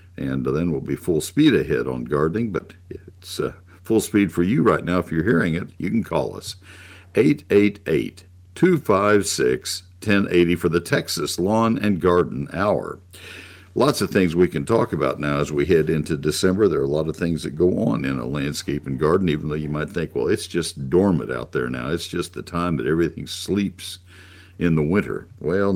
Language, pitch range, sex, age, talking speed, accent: English, 75-95 Hz, male, 60-79, 195 wpm, American